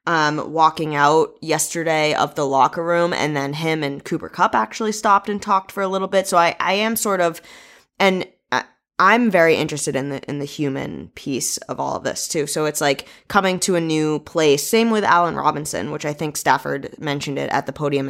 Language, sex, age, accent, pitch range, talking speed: English, female, 20-39, American, 145-185 Hz, 210 wpm